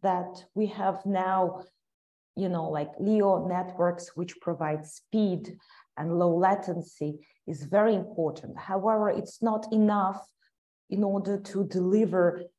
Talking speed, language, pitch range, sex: 125 wpm, English, 175-205 Hz, female